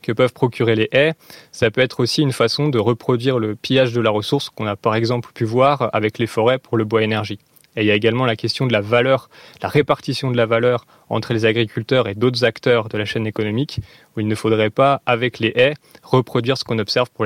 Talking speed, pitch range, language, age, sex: 240 wpm, 110-140 Hz, French, 20-39, male